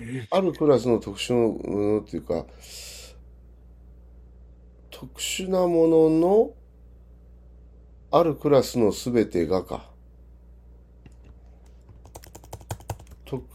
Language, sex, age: Japanese, male, 50-69